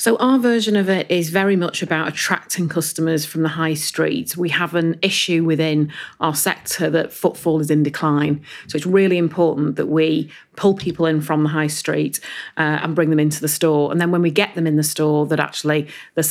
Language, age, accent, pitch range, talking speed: English, 40-59, British, 155-180 Hz, 215 wpm